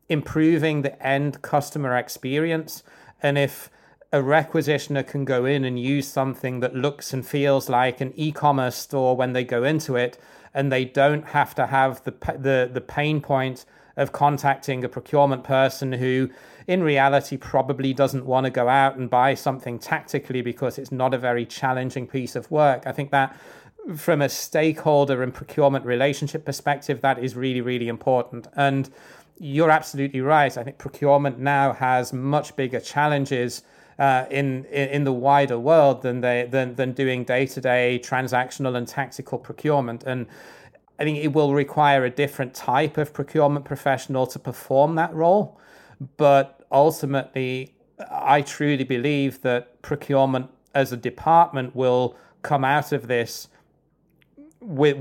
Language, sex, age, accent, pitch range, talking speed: English, male, 30-49, British, 130-145 Hz, 155 wpm